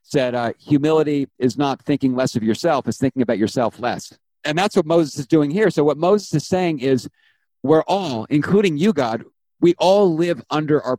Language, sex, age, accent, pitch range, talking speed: English, male, 50-69, American, 130-165 Hz, 200 wpm